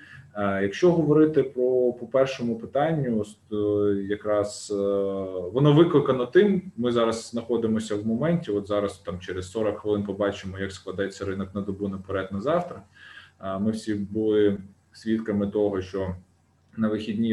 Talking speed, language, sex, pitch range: 135 wpm, Ukrainian, male, 100-110 Hz